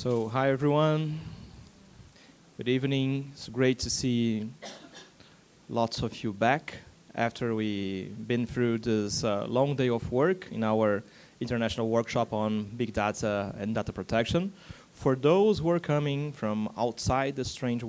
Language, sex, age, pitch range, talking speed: Portuguese, male, 20-39, 110-130 Hz, 140 wpm